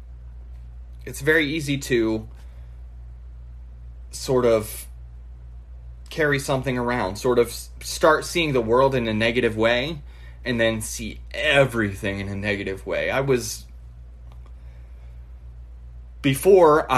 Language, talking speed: English, 105 wpm